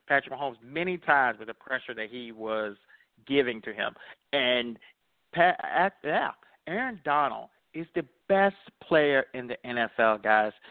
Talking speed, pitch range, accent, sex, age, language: 135 wpm, 120-155 Hz, American, male, 40-59, English